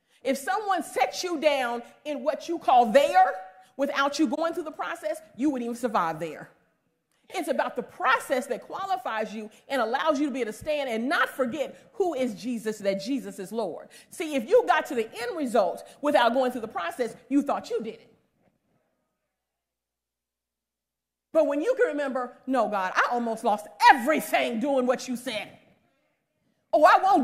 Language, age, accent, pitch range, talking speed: English, 40-59, American, 235-315 Hz, 180 wpm